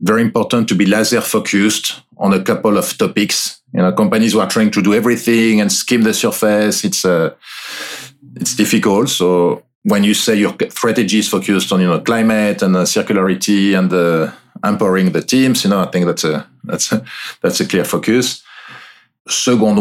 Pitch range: 105-125 Hz